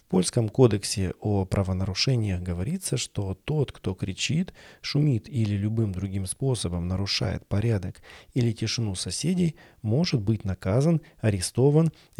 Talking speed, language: 120 wpm, Russian